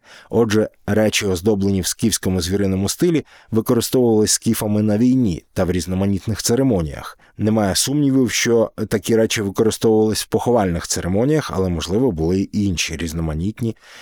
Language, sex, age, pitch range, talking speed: Ukrainian, male, 20-39, 90-110 Hz, 130 wpm